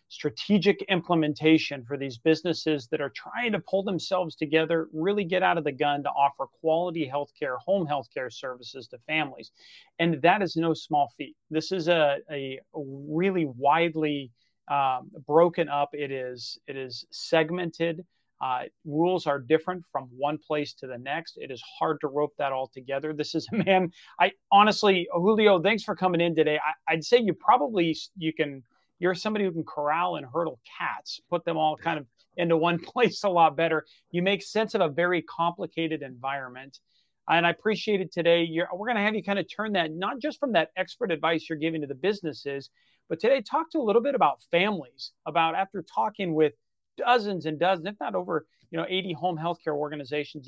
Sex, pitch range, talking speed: male, 150-180 Hz, 195 wpm